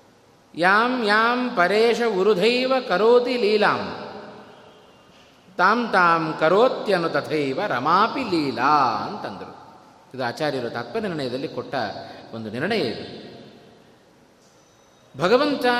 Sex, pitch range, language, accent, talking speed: male, 145-235 Hz, Kannada, native, 80 wpm